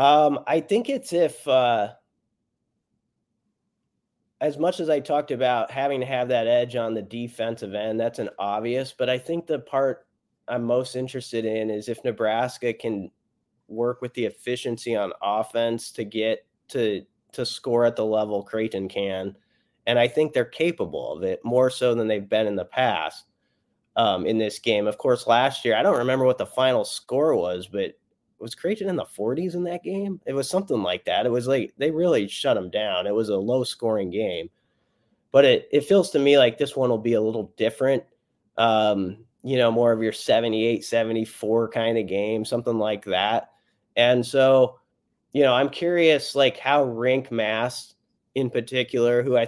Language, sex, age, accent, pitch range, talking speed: English, male, 30-49, American, 115-140 Hz, 185 wpm